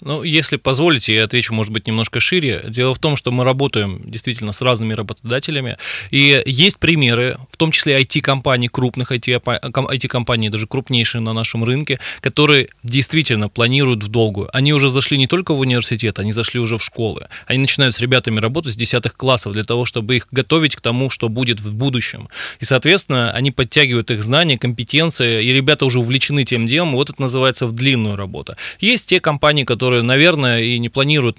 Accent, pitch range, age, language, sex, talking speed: native, 120-140 Hz, 20-39, Russian, male, 185 wpm